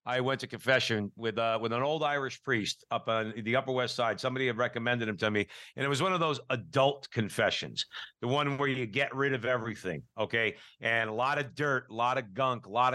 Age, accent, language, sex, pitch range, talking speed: 60-79, American, English, male, 120-150 Hz, 235 wpm